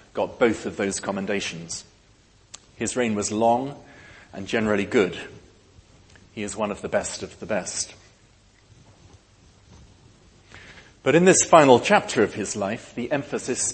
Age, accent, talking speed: 40-59, British, 135 wpm